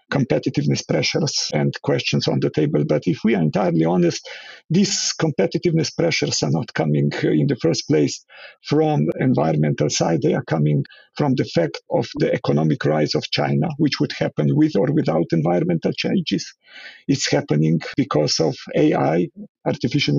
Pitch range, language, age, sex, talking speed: 135-175 Hz, English, 50-69, male, 160 wpm